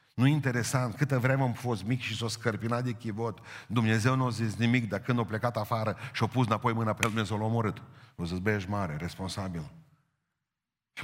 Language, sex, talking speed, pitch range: Romanian, male, 205 wpm, 95-125 Hz